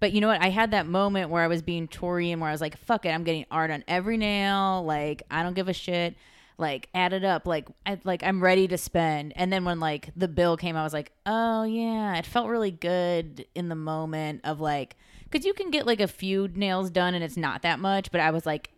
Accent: American